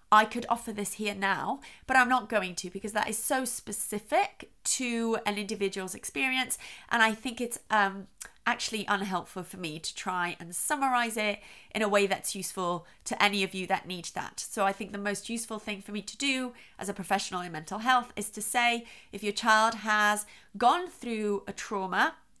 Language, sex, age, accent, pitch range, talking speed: English, female, 30-49, British, 195-245 Hz, 200 wpm